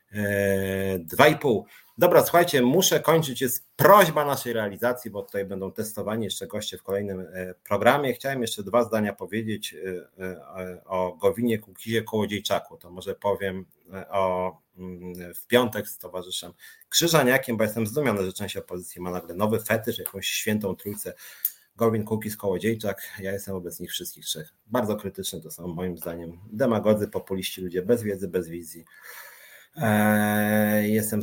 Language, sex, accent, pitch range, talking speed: Polish, male, native, 90-115 Hz, 140 wpm